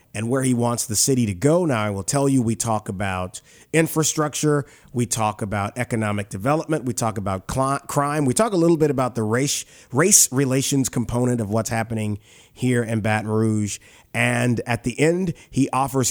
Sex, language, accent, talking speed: male, English, American, 185 wpm